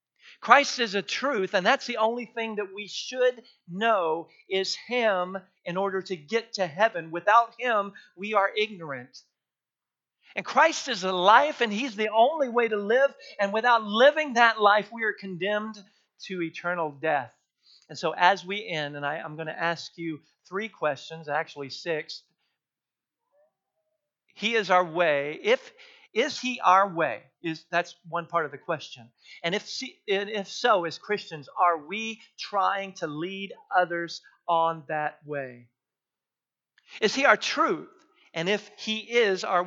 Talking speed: 160 wpm